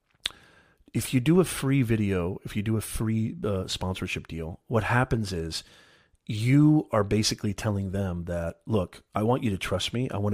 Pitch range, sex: 95-125 Hz, male